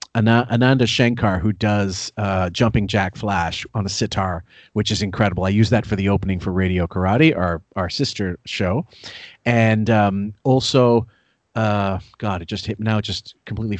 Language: English